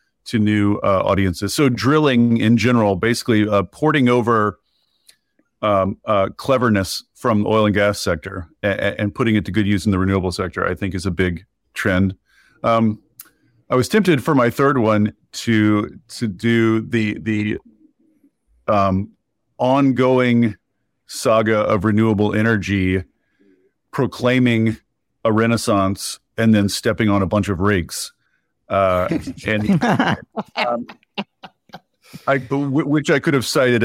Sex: male